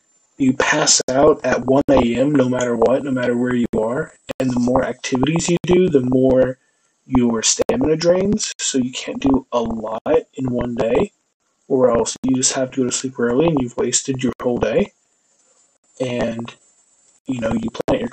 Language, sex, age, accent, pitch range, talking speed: English, male, 20-39, American, 125-150 Hz, 180 wpm